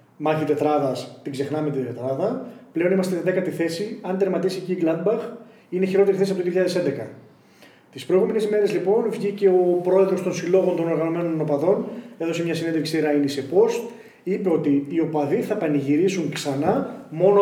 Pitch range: 155-200 Hz